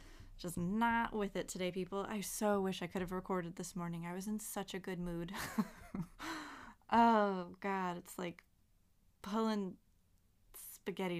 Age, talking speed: 20-39, 150 wpm